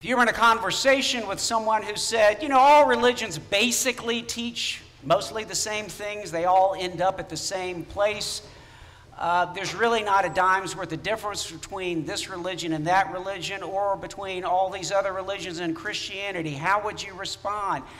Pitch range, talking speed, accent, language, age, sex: 155-200 Hz, 185 wpm, American, English, 50-69, male